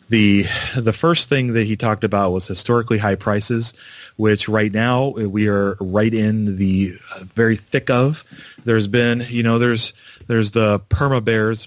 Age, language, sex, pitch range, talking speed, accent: 30-49, English, male, 100-115 Hz, 165 wpm, American